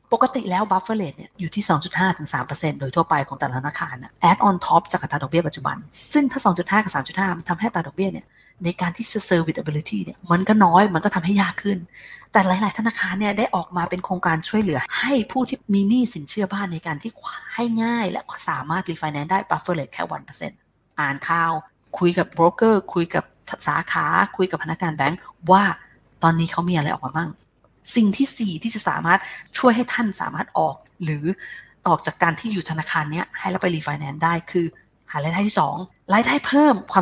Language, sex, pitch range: Thai, female, 160-205 Hz